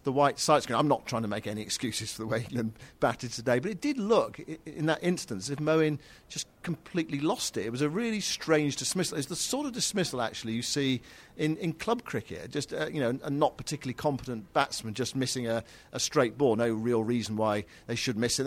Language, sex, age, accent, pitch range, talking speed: English, male, 50-69, British, 120-145 Hz, 230 wpm